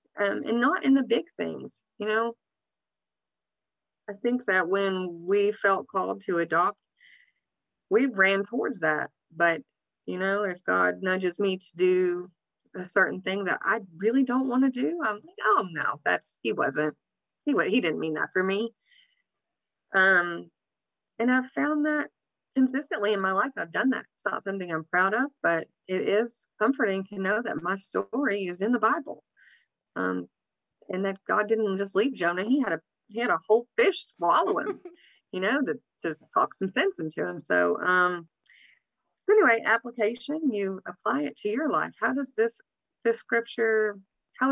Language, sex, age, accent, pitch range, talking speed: English, female, 30-49, American, 180-245 Hz, 175 wpm